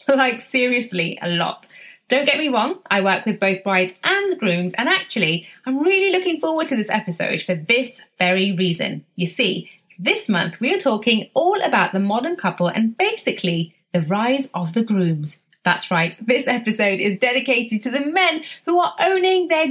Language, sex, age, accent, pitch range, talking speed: English, female, 30-49, British, 185-290 Hz, 185 wpm